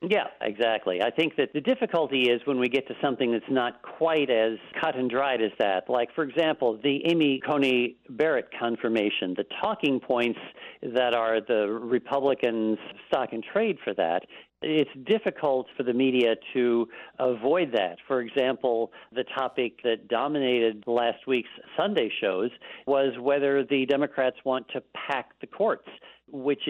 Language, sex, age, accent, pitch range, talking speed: English, male, 50-69, American, 110-140 Hz, 155 wpm